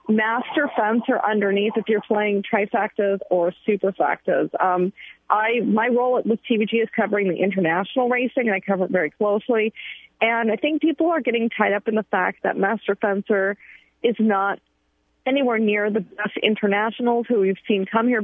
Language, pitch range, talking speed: English, 195-235 Hz, 170 wpm